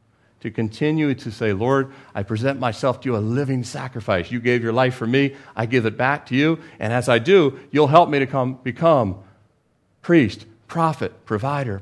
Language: English